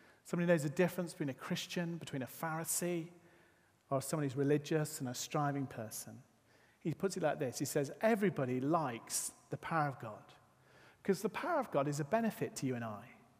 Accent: British